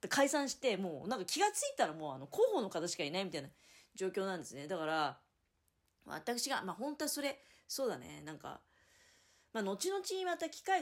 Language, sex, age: Japanese, female, 30-49